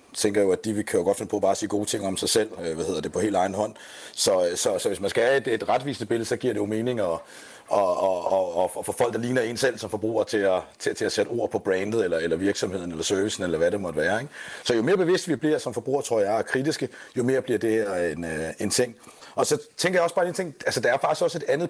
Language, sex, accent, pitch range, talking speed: Danish, male, native, 120-165 Hz, 285 wpm